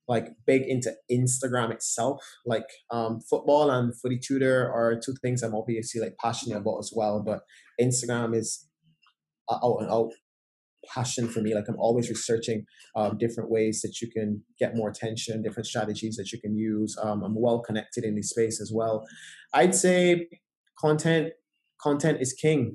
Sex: male